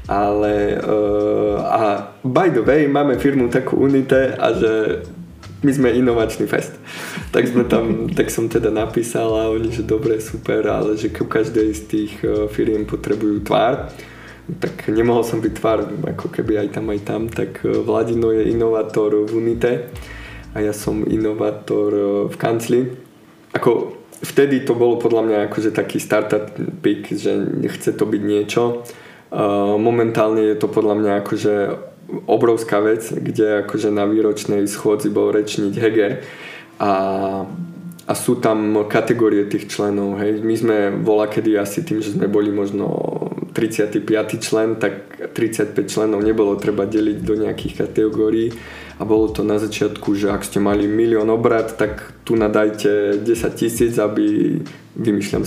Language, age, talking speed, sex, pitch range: Slovak, 20-39, 150 wpm, male, 105-115 Hz